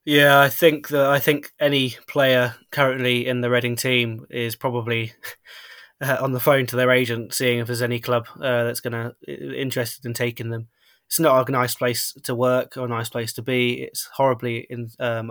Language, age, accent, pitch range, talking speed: English, 20-39, British, 115-125 Hz, 200 wpm